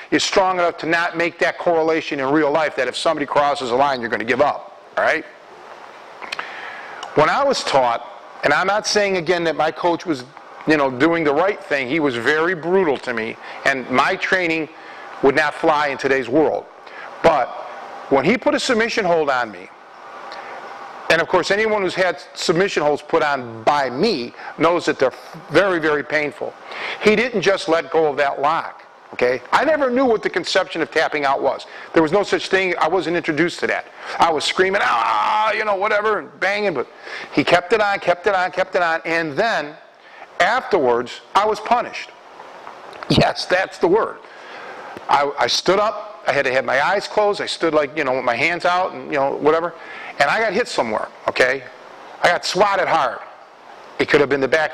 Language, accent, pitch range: English, American, 155-200 Hz